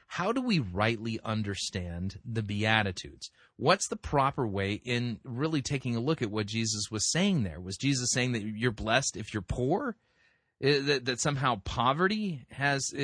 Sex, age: male, 30-49